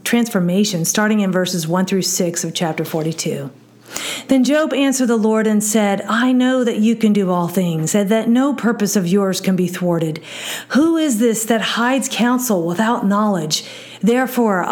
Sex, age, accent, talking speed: female, 50-69, American, 175 wpm